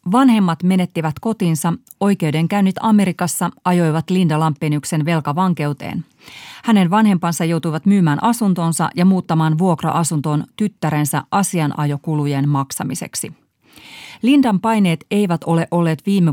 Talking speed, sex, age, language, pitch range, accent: 95 wpm, female, 30-49, Finnish, 155-185 Hz, native